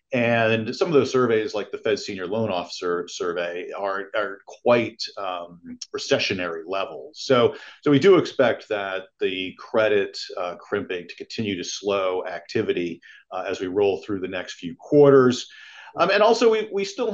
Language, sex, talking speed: English, male, 170 wpm